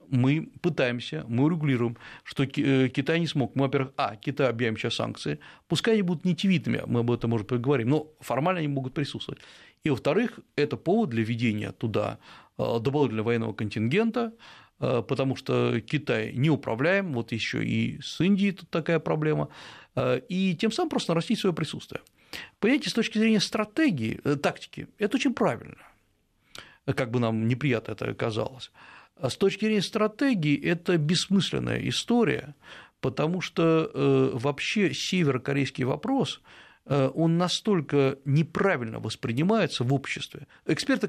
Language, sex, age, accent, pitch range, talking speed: Russian, male, 40-59, native, 130-180 Hz, 140 wpm